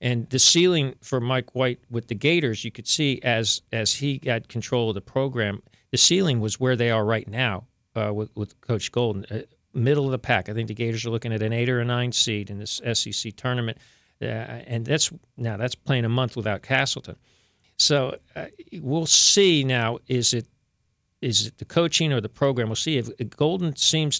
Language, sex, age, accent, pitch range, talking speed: English, male, 50-69, American, 110-135 Hz, 210 wpm